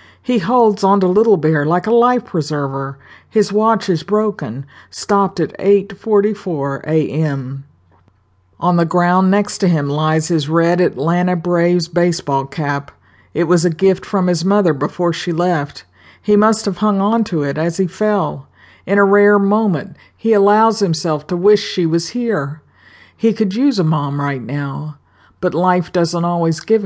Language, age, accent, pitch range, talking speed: English, 50-69, American, 145-185 Hz, 170 wpm